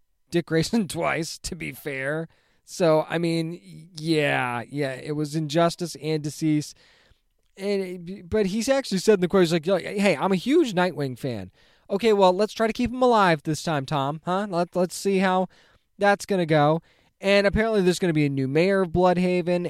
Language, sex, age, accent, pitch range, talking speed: English, male, 20-39, American, 145-185 Hz, 190 wpm